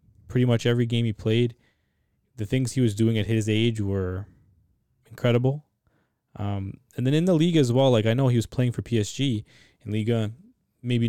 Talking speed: 190 wpm